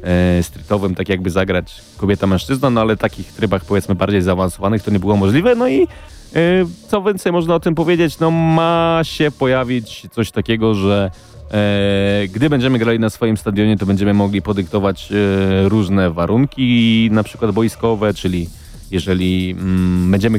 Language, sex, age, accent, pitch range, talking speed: Polish, male, 30-49, native, 100-125 Hz, 145 wpm